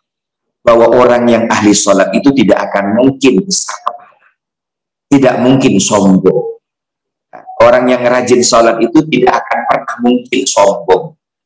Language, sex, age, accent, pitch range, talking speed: Indonesian, male, 50-69, native, 95-130 Hz, 120 wpm